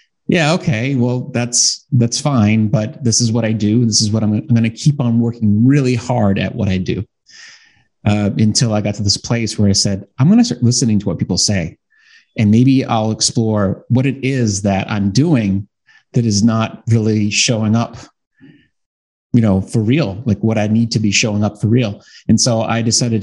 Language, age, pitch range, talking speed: English, 30-49, 105-125 Hz, 210 wpm